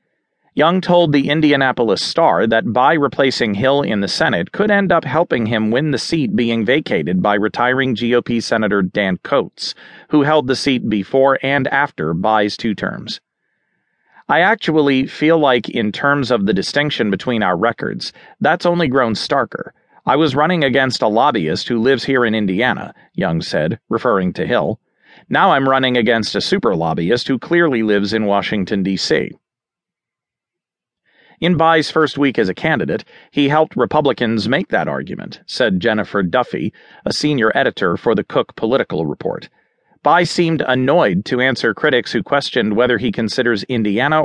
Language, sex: English, male